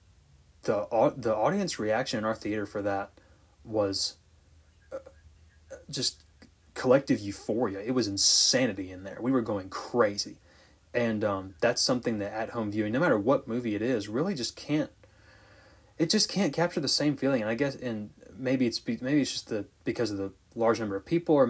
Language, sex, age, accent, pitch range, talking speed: English, male, 20-39, American, 100-125 Hz, 180 wpm